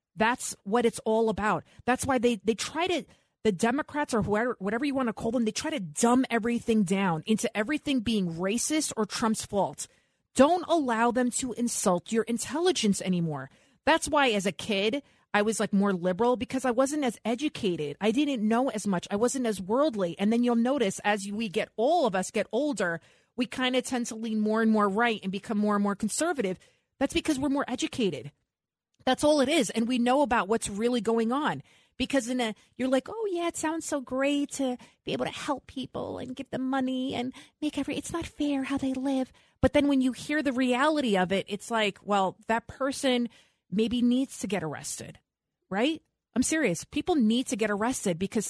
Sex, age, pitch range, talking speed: female, 30-49, 210-270 Hz, 210 wpm